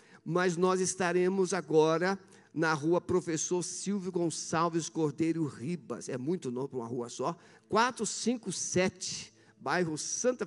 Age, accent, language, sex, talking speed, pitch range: 50-69, Brazilian, Portuguese, male, 115 wpm, 130-180 Hz